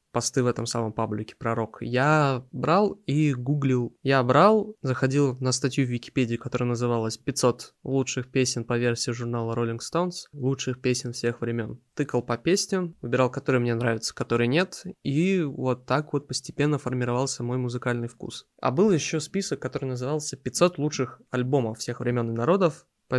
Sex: male